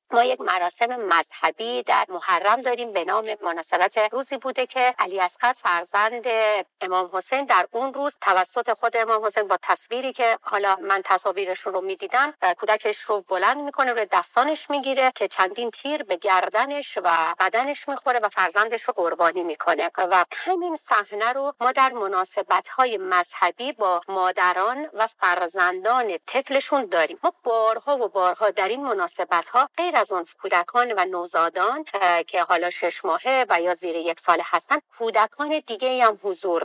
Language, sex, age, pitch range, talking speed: Persian, female, 50-69, 185-255 Hz, 160 wpm